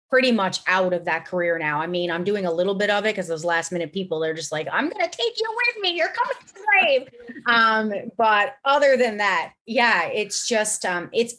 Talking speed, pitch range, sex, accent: 240 wpm, 175-220 Hz, female, American